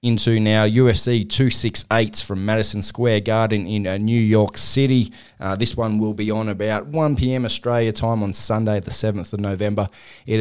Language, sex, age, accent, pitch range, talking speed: English, male, 20-39, Australian, 95-115 Hz, 165 wpm